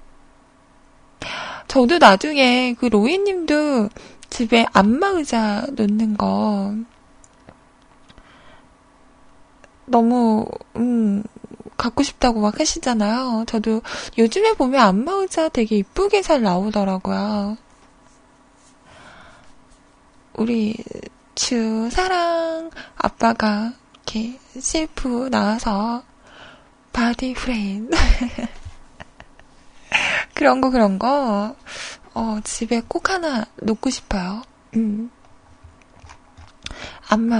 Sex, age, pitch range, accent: female, 20-39, 215-270 Hz, native